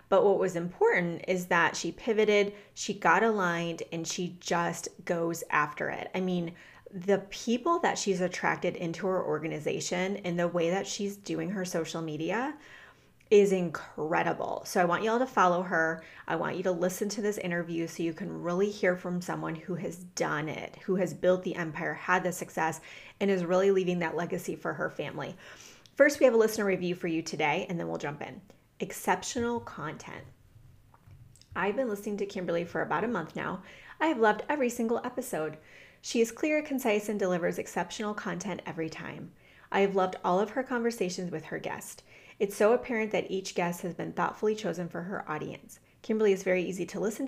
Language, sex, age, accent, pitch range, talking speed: English, female, 30-49, American, 175-215 Hz, 195 wpm